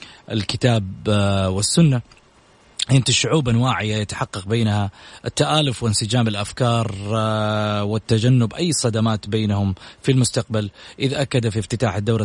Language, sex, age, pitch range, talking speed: Arabic, male, 30-49, 100-120 Hz, 105 wpm